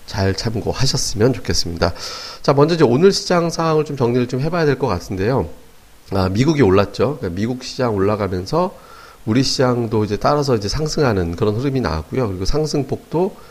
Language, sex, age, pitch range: Korean, male, 40-59, 100-140 Hz